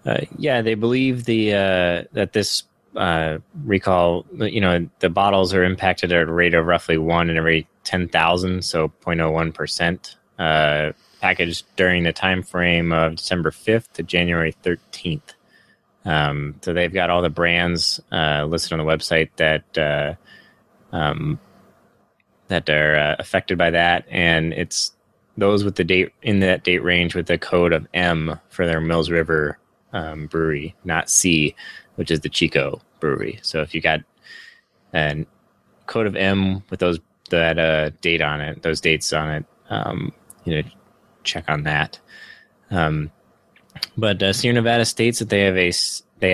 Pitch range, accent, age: 80-95 Hz, American, 20-39